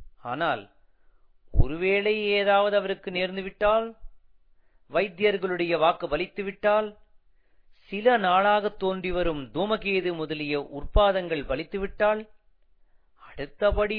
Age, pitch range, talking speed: 40-59, 145-200 Hz, 75 wpm